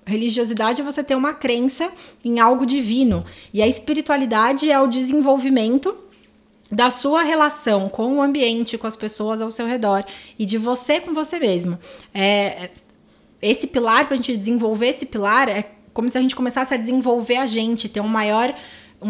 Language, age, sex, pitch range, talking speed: Portuguese, 20-39, female, 200-250 Hz, 175 wpm